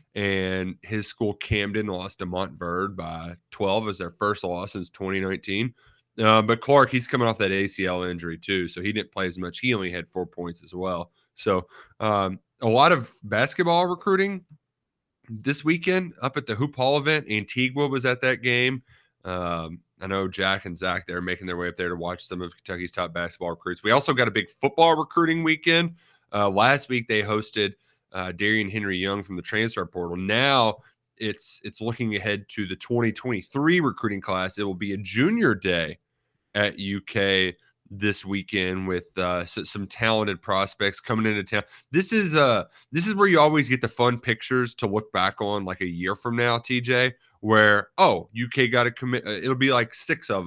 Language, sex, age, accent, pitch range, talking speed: English, male, 20-39, American, 95-125 Hz, 190 wpm